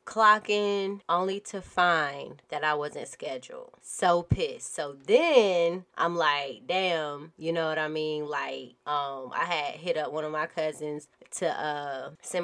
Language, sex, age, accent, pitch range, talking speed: English, female, 20-39, American, 150-185 Hz, 160 wpm